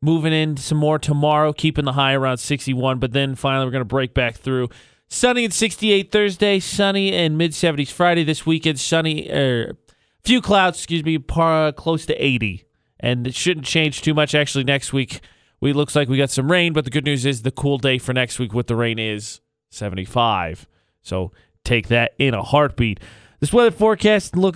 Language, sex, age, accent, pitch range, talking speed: English, male, 20-39, American, 130-165 Hz, 205 wpm